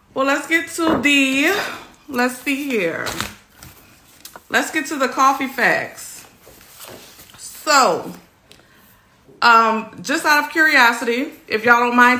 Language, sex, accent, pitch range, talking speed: English, female, American, 215-265 Hz, 120 wpm